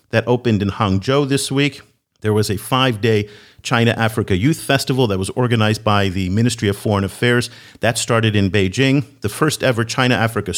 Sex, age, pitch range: male, 50-69, 105-130 Hz